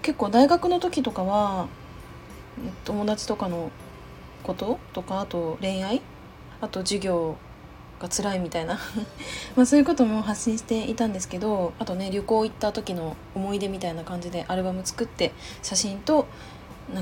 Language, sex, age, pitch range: Japanese, female, 20-39, 185-245 Hz